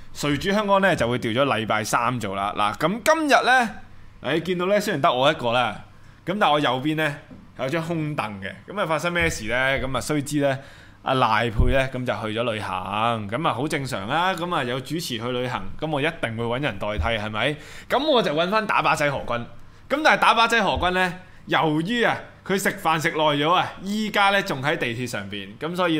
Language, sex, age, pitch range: Chinese, male, 20-39, 115-160 Hz